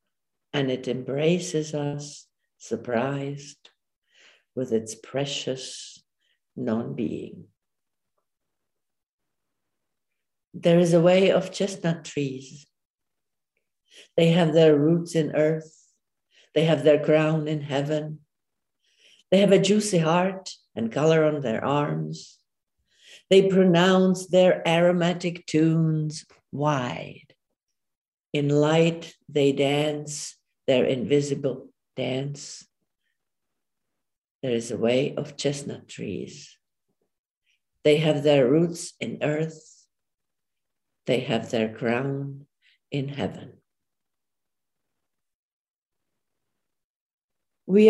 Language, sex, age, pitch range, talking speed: English, female, 60-79, 140-170 Hz, 90 wpm